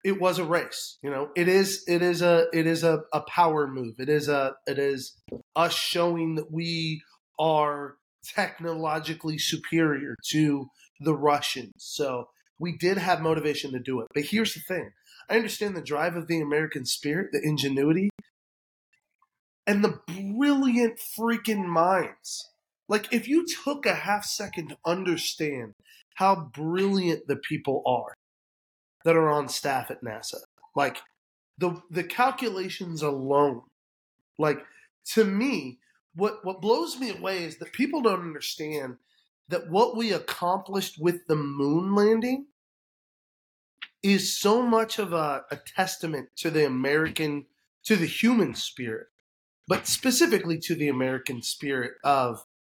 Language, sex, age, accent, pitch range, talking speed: English, male, 30-49, American, 145-200 Hz, 145 wpm